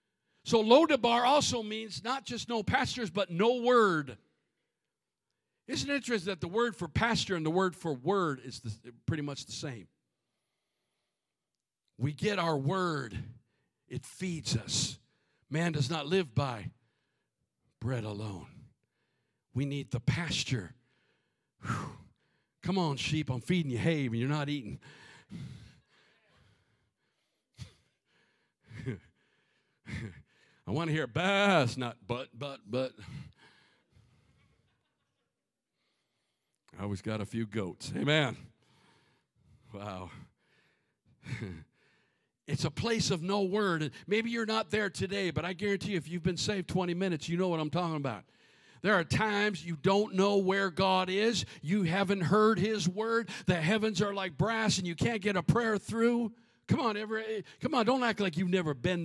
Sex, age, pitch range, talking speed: male, 50-69, 140-205 Hz, 140 wpm